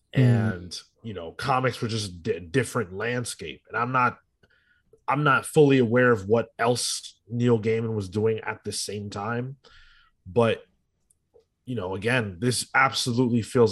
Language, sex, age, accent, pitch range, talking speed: English, male, 20-39, American, 110-125 Hz, 155 wpm